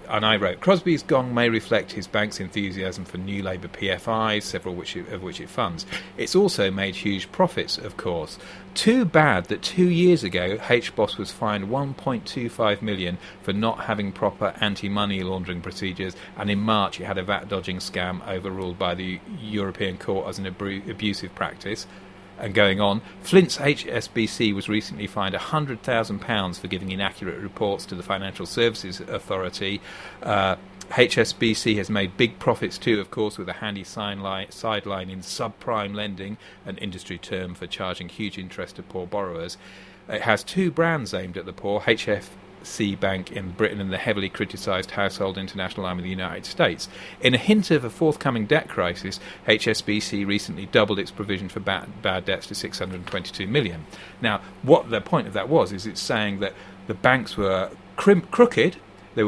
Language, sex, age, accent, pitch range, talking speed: English, male, 40-59, British, 95-115 Hz, 170 wpm